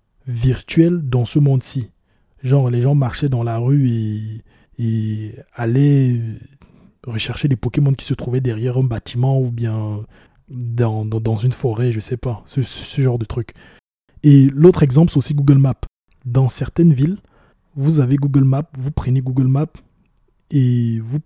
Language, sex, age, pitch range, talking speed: French, male, 20-39, 115-145 Hz, 165 wpm